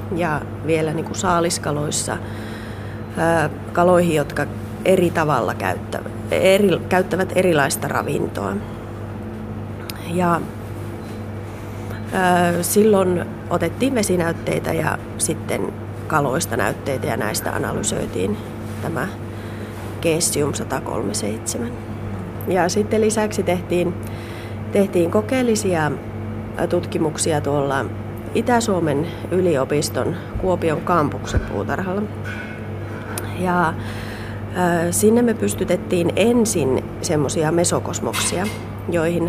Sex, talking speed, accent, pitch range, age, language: female, 75 wpm, native, 110-170 Hz, 30-49, Finnish